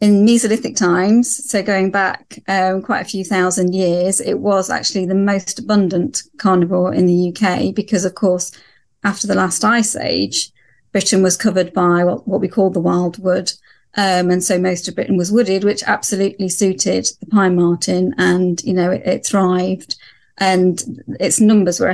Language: English